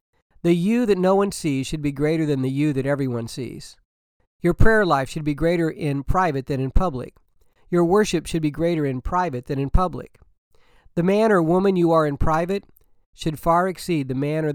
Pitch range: 140-185 Hz